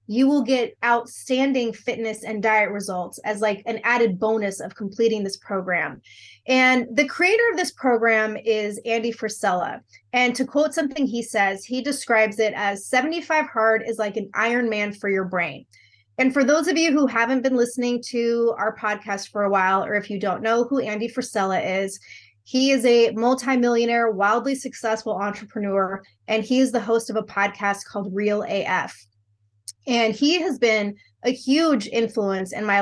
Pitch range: 205-255 Hz